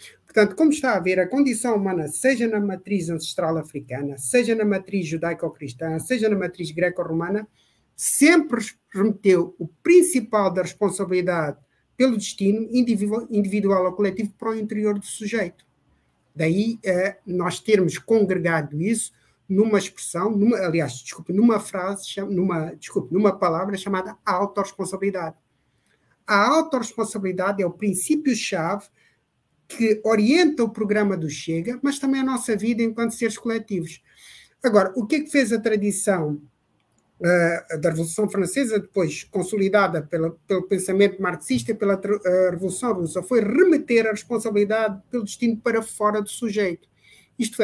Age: 50-69